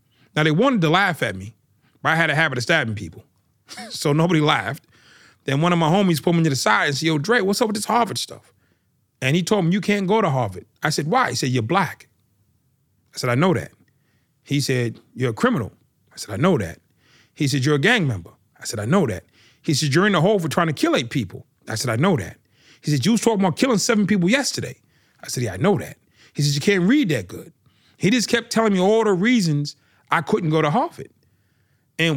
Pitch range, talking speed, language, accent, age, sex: 130-175 Hz, 250 wpm, English, American, 30-49, male